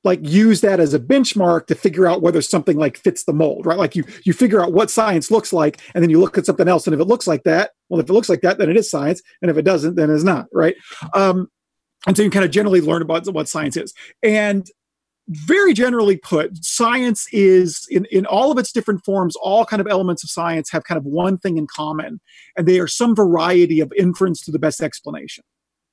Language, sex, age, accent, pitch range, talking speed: English, male, 40-59, American, 150-190 Hz, 245 wpm